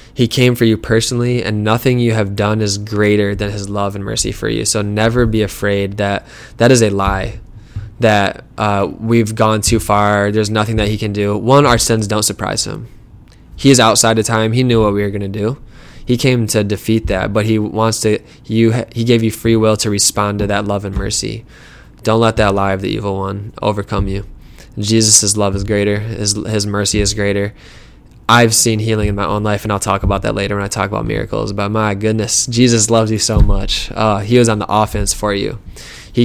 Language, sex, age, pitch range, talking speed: English, male, 20-39, 100-115 Hz, 225 wpm